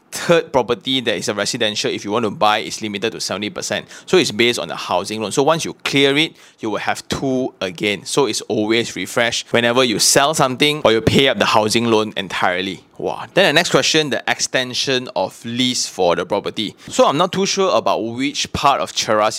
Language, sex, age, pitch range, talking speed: English, male, 20-39, 110-130 Hz, 215 wpm